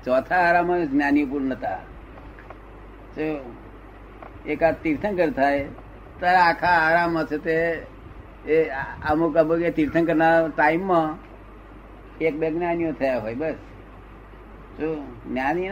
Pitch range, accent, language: 130-165 Hz, native, Gujarati